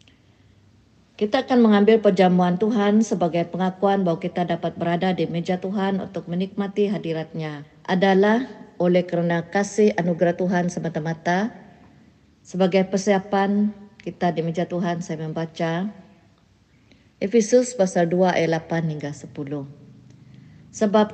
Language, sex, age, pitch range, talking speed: Malay, female, 50-69, 165-205 Hz, 115 wpm